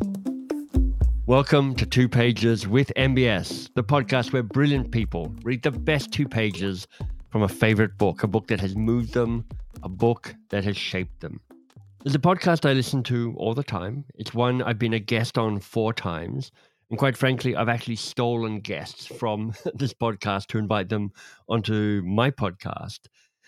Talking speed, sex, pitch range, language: 170 wpm, male, 105-125 Hz, English